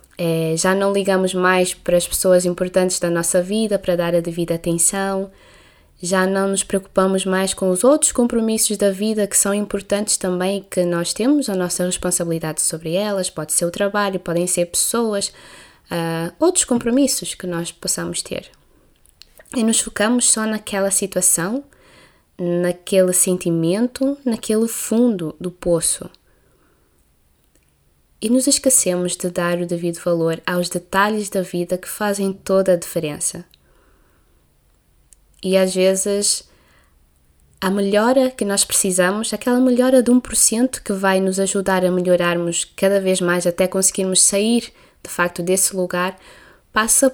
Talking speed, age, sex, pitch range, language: 145 wpm, 20-39, female, 175-210 Hz, Portuguese